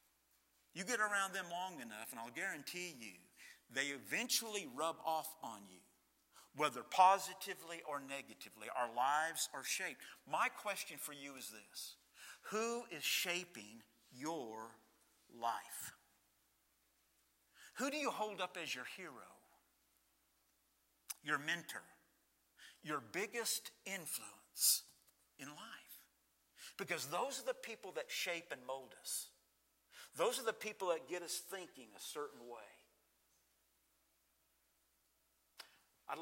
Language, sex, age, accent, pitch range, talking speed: English, male, 50-69, American, 125-185 Hz, 120 wpm